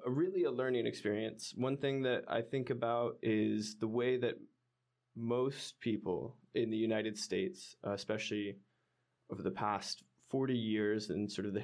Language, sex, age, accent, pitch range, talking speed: English, male, 20-39, American, 105-125 Hz, 165 wpm